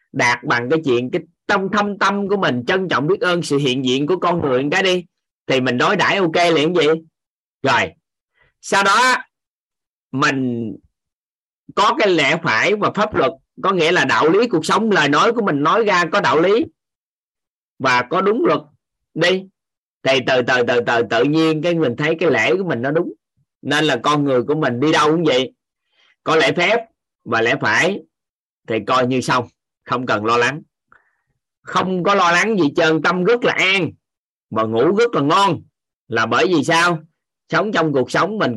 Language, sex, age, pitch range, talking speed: Vietnamese, male, 20-39, 125-170 Hz, 200 wpm